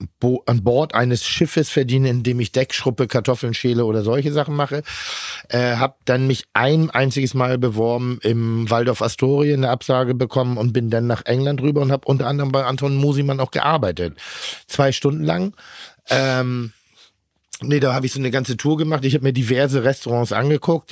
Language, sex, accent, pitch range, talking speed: German, male, German, 115-135 Hz, 180 wpm